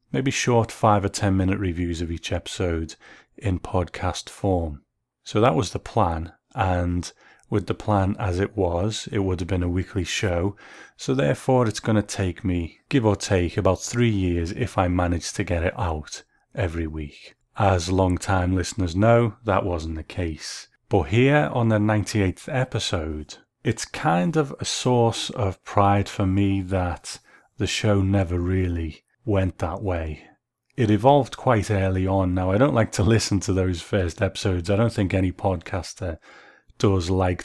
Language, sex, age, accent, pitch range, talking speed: English, male, 30-49, British, 90-105 Hz, 175 wpm